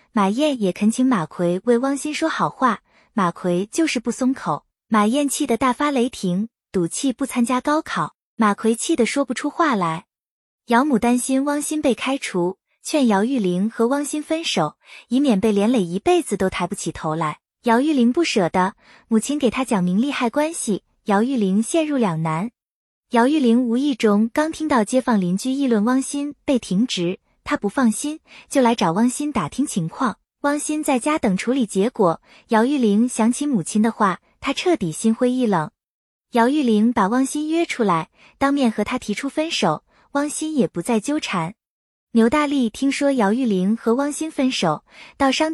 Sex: female